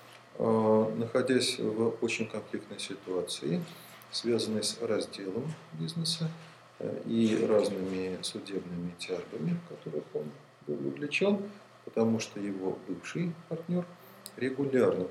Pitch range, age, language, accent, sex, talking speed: 110-170 Hz, 40-59, Russian, native, male, 90 wpm